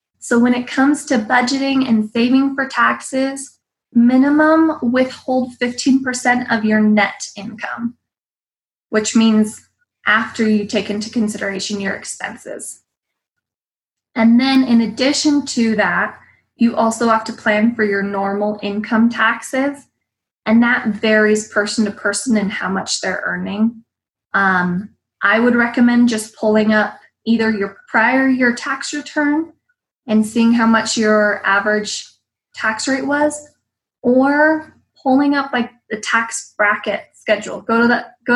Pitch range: 210-250 Hz